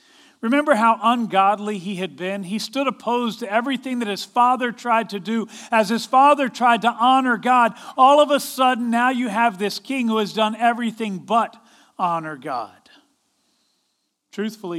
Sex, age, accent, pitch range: male, 40-59, American, 195-255 Hz